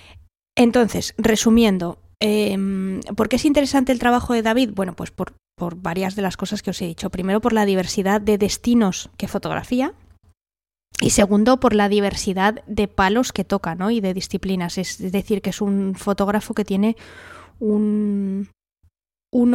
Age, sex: 20-39, female